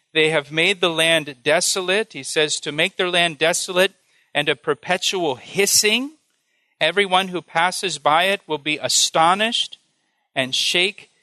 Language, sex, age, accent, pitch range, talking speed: English, male, 40-59, American, 145-190 Hz, 145 wpm